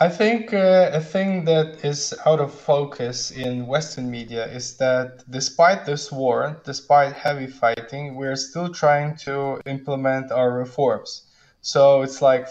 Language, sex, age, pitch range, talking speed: English, male, 20-39, 125-145 Hz, 150 wpm